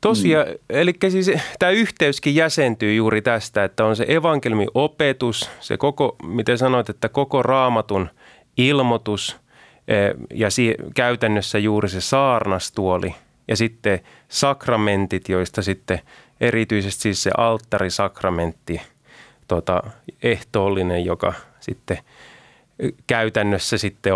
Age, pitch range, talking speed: 30-49, 95-135 Hz, 100 wpm